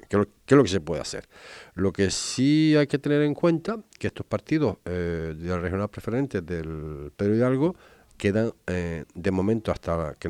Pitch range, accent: 90-135 Hz, Spanish